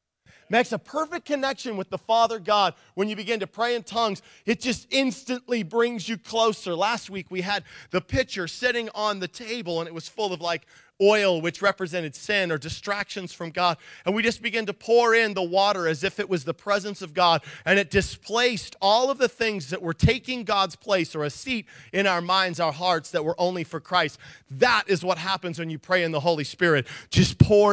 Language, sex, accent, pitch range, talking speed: English, male, American, 175-245 Hz, 215 wpm